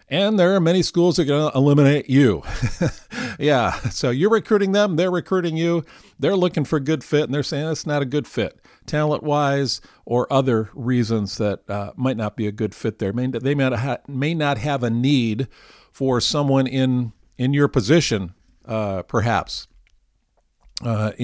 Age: 50-69